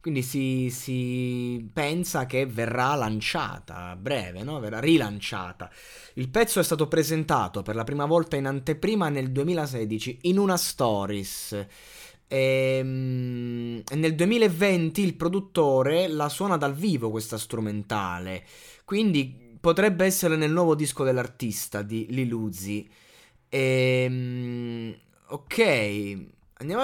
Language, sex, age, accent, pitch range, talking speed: Italian, male, 20-39, native, 110-145 Hz, 115 wpm